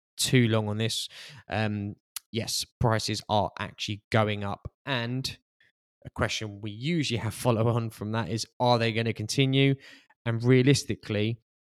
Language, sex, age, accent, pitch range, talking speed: English, male, 20-39, British, 100-115 Hz, 145 wpm